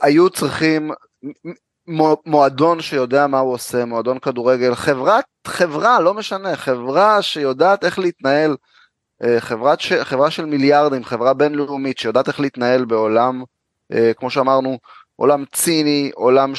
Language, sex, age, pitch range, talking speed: Hebrew, male, 30-49, 135-180 Hz, 120 wpm